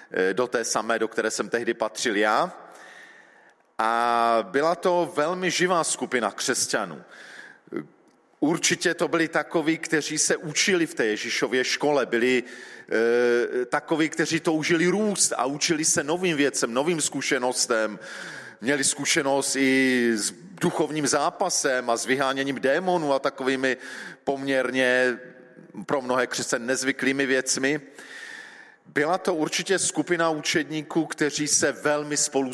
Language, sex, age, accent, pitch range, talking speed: Czech, male, 40-59, native, 130-170 Hz, 125 wpm